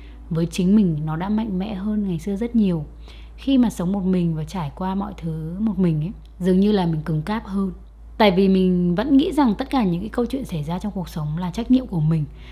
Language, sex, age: Vietnamese, female, 20-39